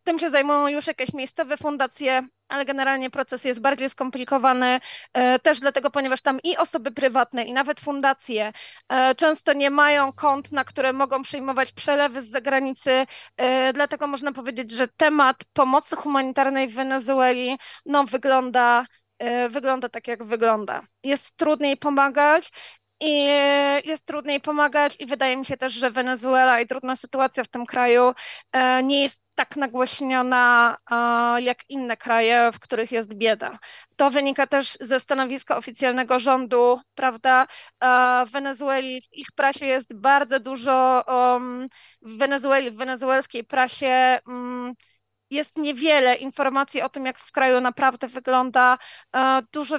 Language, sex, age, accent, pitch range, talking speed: Polish, female, 20-39, native, 255-280 Hz, 135 wpm